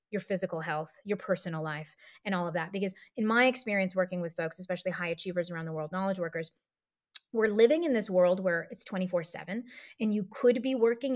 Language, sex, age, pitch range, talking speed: English, female, 30-49, 185-240 Hz, 205 wpm